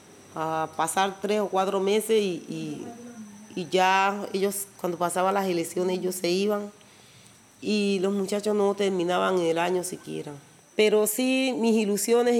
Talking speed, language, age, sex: 145 wpm, Spanish, 30-49, female